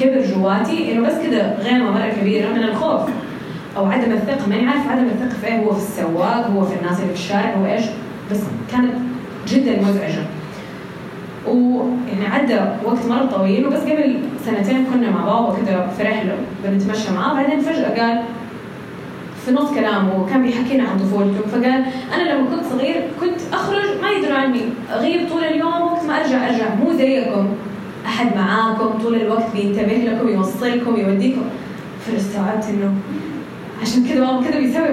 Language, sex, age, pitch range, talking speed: Arabic, female, 20-39, 200-260 Hz, 160 wpm